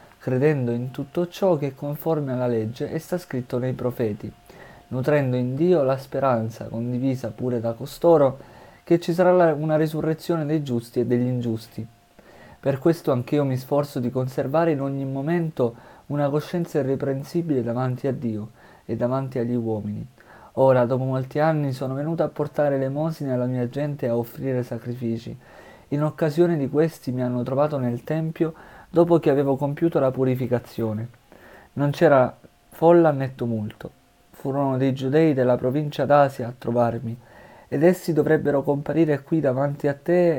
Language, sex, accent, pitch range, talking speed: Italian, male, native, 120-150 Hz, 155 wpm